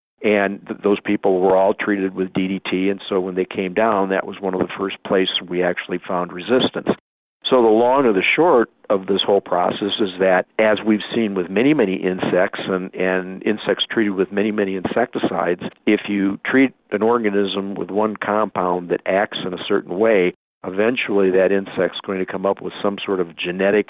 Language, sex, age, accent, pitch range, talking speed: English, male, 50-69, American, 95-105 Hz, 195 wpm